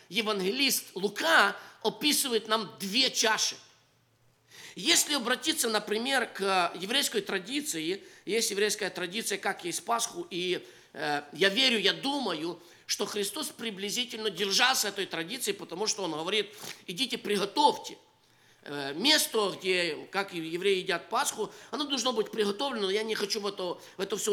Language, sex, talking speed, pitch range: English, male, 135 wpm, 200-275 Hz